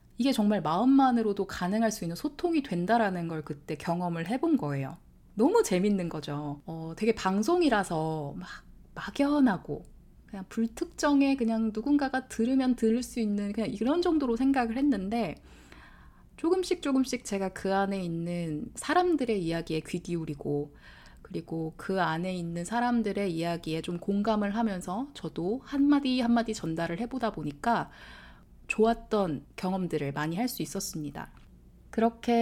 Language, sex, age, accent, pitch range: Korean, female, 20-39, native, 170-245 Hz